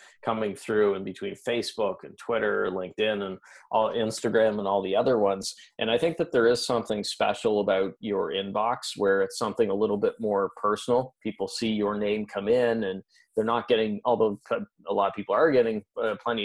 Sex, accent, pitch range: male, American, 100-115 Hz